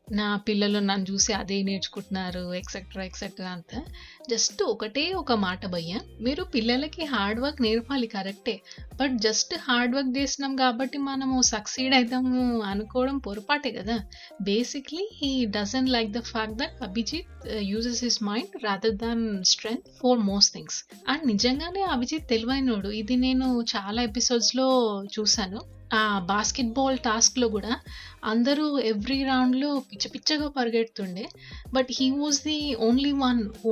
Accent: native